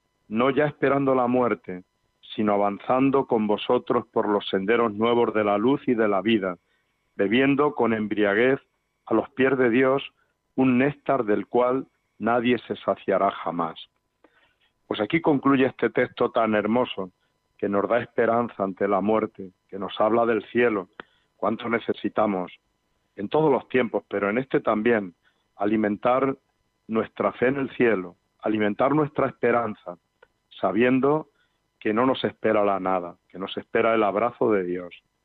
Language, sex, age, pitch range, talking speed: Spanish, male, 50-69, 105-130 Hz, 150 wpm